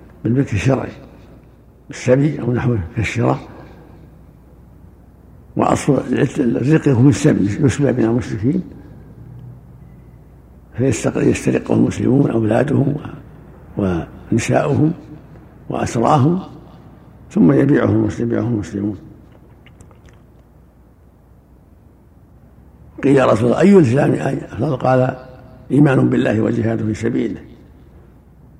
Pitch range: 105-135 Hz